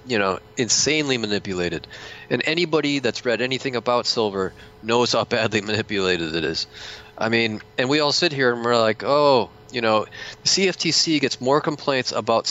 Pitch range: 105-125 Hz